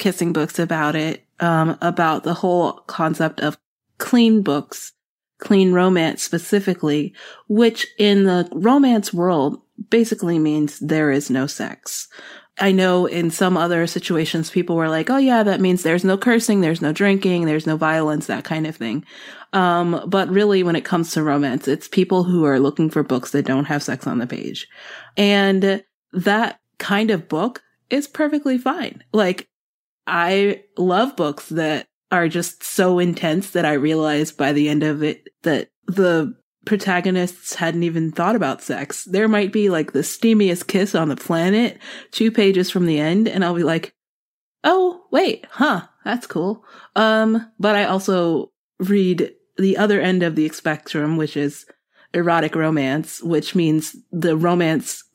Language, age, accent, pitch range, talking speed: English, 30-49, American, 155-205 Hz, 165 wpm